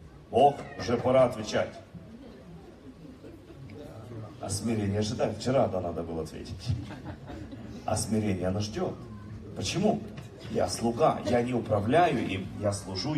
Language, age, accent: Russian, 40-59, native